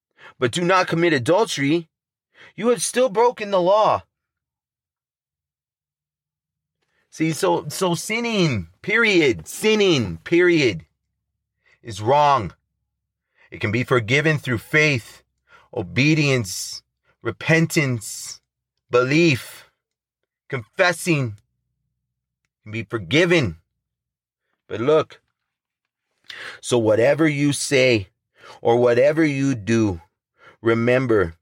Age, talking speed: 30-49, 85 wpm